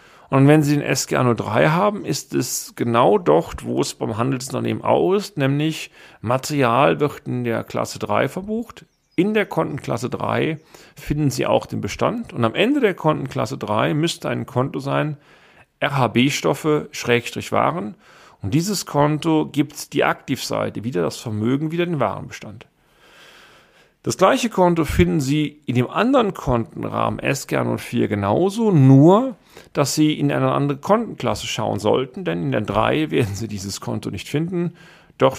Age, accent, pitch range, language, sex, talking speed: 40-59, German, 120-160 Hz, German, male, 150 wpm